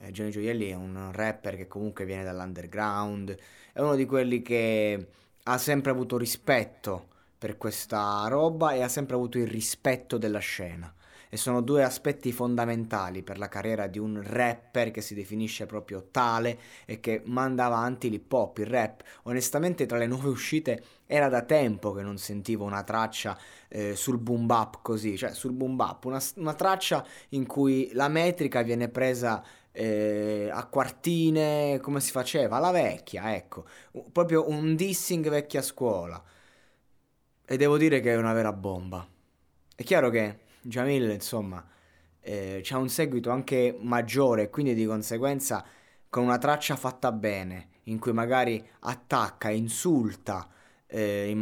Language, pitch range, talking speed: Italian, 105-135 Hz, 155 wpm